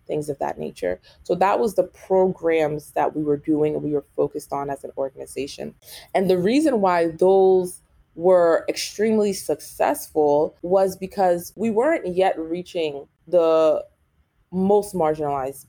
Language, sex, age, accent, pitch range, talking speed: English, female, 20-39, American, 155-205 Hz, 145 wpm